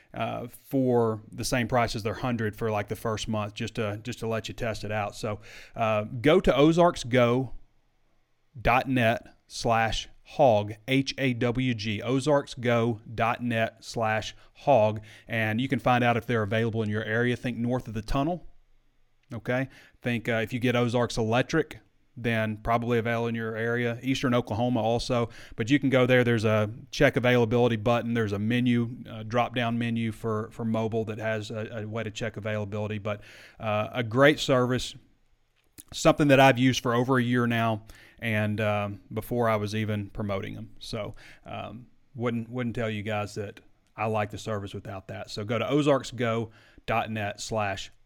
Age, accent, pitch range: 30-49, American, 110-125 Hz